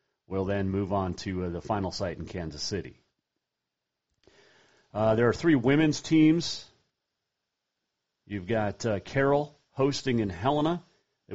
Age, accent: 40-59, American